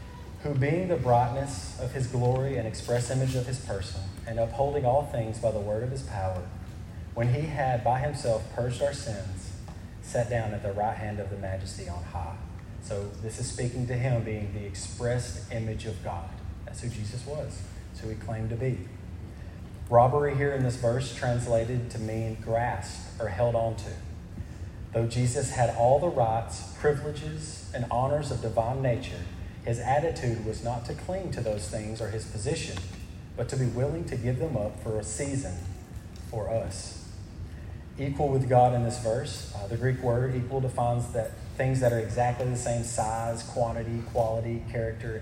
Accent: American